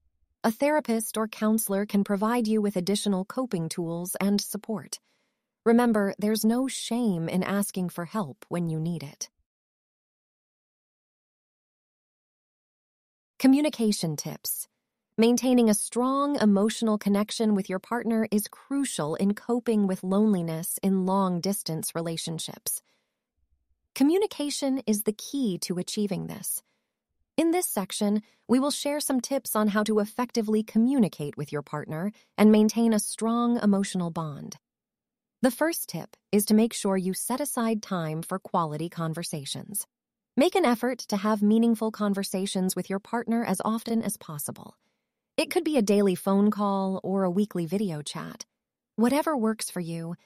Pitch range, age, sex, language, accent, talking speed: 185-235 Hz, 30-49, female, English, American, 140 wpm